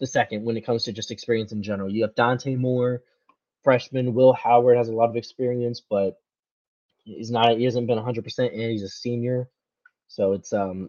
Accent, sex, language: American, male, English